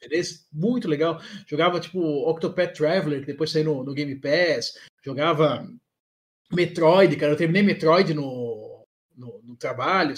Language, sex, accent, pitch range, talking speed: Portuguese, male, Brazilian, 155-225 Hz, 135 wpm